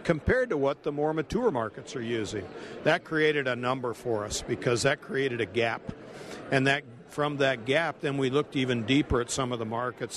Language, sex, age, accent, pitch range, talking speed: English, male, 60-79, American, 125-155 Hz, 205 wpm